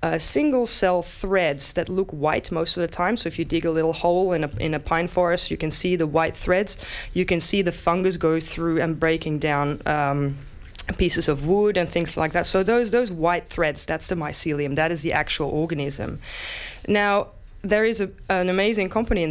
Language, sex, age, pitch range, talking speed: English, female, 20-39, 155-195 Hz, 210 wpm